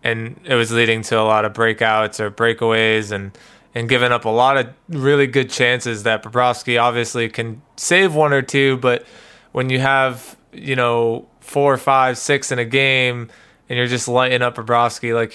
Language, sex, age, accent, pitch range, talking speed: English, male, 20-39, American, 110-135 Hz, 190 wpm